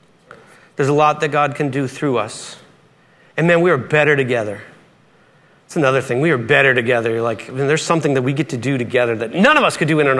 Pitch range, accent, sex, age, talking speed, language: 120-155 Hz, American, male, 40-59, 240 wpm, English